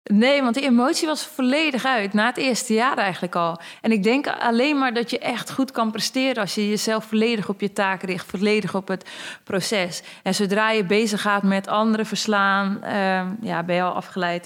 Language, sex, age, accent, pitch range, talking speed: Dutch, female, 20-39, Dutch, 185-210 Hz, 210 wpm